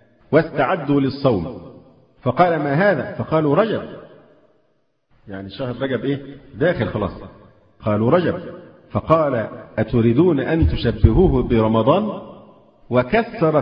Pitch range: 115-145 Hz